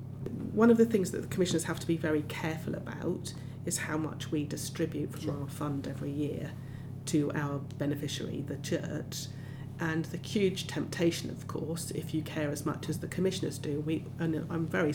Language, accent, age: English, British, 40-59